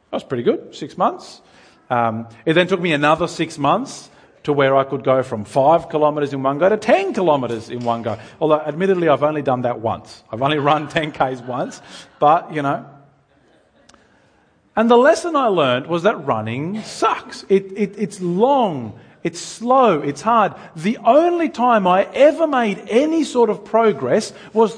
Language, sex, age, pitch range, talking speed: English, male, 40-59, 150-225 Hz, 180 wpm